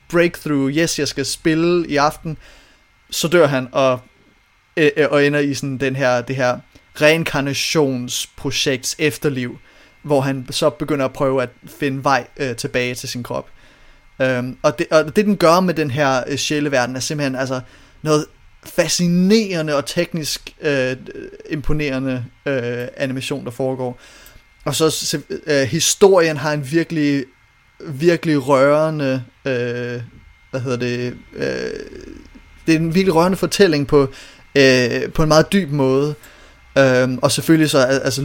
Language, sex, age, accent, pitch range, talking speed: Danish, male, 30-49, native, 130-155 Hz, 145 wpm